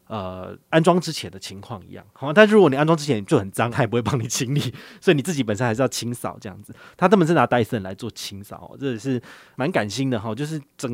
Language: Chinese